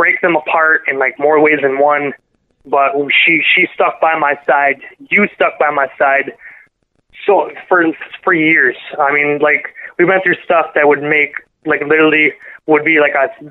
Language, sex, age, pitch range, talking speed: English, male, 20-39, 140-155 Hz, 180 wpm